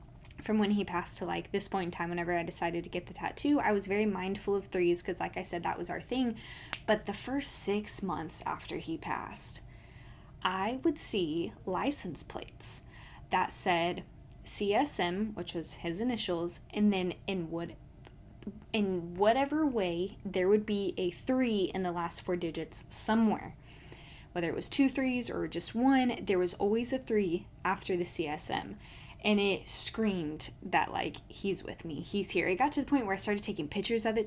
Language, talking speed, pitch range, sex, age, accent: English, 185 wpm, 180-225 Hz, female, 10-29, American